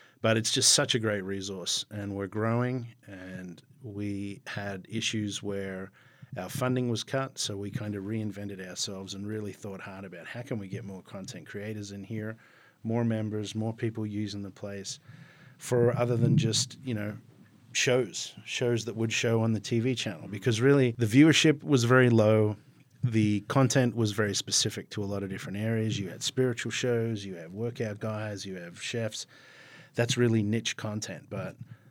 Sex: male